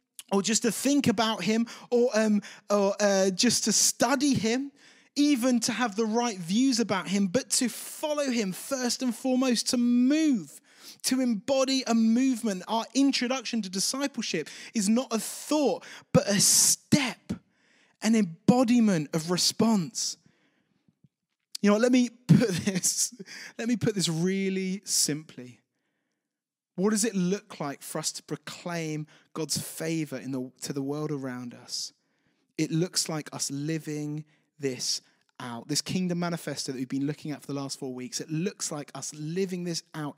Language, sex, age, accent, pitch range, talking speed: English, male, 20-39, British, 155-240 Hz, 160 wpm